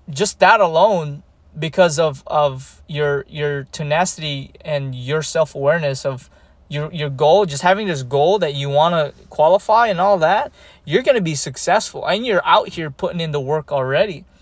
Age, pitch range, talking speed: 20-39, 150-200 Hz, 165 wpm